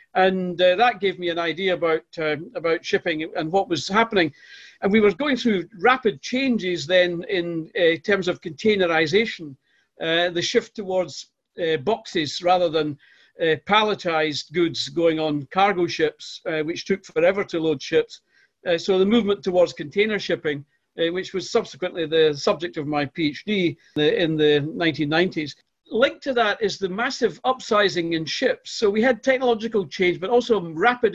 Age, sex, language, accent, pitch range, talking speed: 50-69, male, English, British, 165-205 Hz, 170 wpm